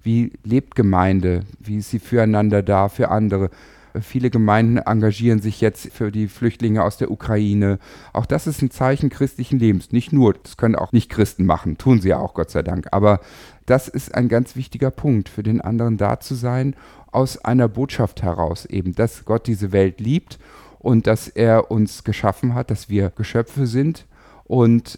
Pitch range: 100-125 Hz